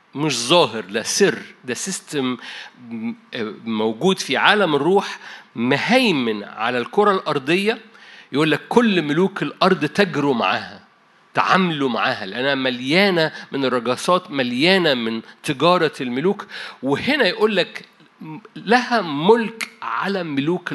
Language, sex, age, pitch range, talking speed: Arabic, male, 50-69, 145-205 Hz, 105 wpm